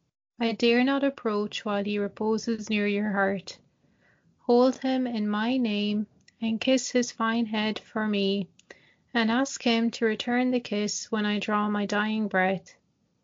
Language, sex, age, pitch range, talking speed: English, female, 30-49, 200-235 Hz, 160 wpm